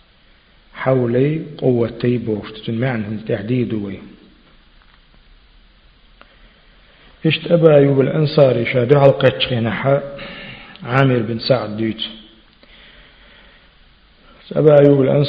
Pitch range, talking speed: 115-140 Hz, 60 wpm